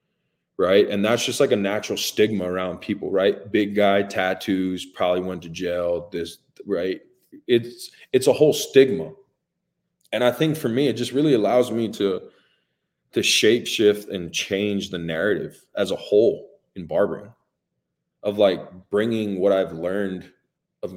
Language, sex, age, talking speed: English, male, 20-39, 155 wpm